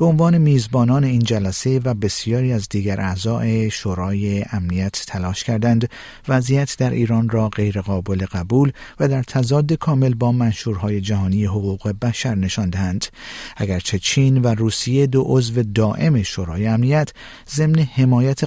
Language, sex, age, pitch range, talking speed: Persian, male, 50-69, 105-135 Hz, 135 wpm